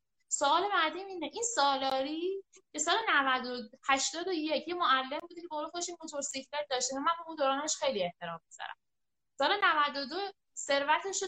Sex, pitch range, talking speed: female, 250-340 Hz, 155 wpm